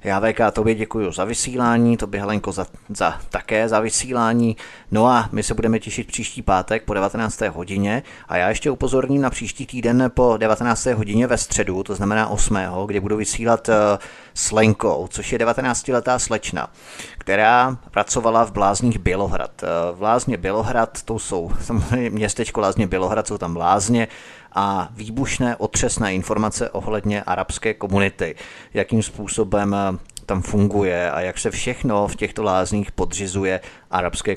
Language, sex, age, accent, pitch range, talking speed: Czech, male, 30-49, native, 95-115 Hz, 145 wpm